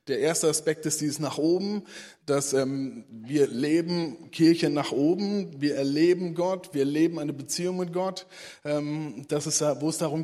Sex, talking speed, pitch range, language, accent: male, 170 wpm, 145-170 Hz, German, German